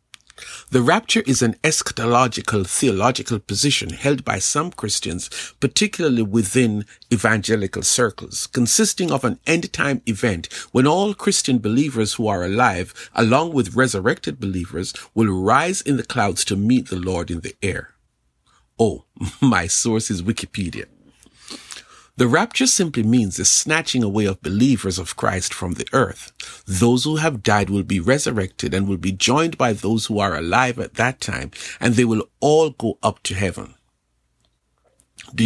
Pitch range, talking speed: 95-135 Hz, 150 wpm